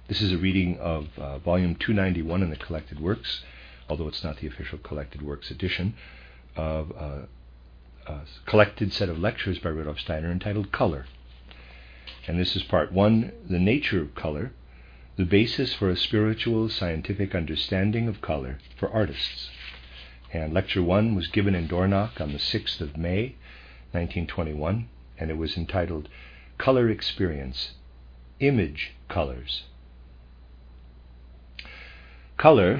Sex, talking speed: male, 135 wpm